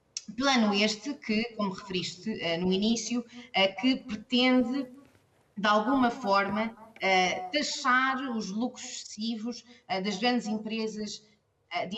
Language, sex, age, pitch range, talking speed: Portuguese, female, 20-39, 185-245 Hz, 100 wpm